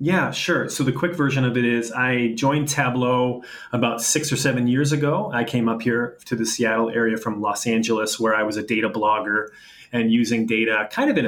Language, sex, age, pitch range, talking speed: English, male, 30-49, 110-125 Hz, 220 wpm